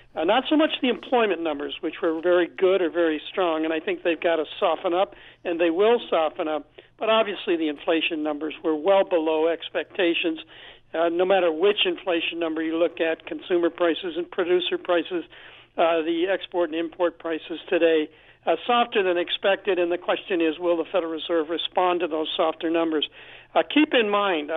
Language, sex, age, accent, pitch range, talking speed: English, male, 60-79, American, 165-205 Hz, 190 wpm